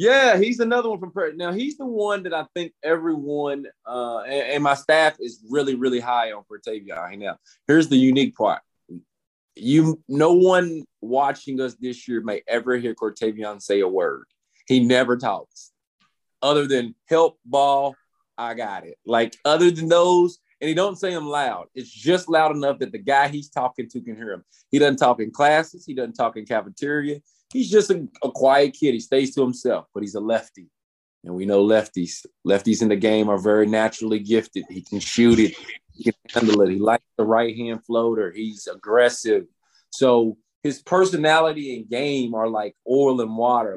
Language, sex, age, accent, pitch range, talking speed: English, male, 20-39, American, 115-160 Hz, 190 wpm